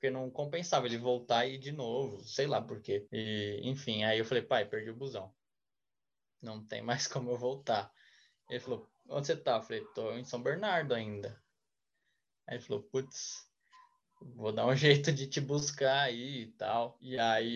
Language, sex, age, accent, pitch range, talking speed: Portuguese, male, 10-29, Brazilian, 120-150 Hz, 190 wpm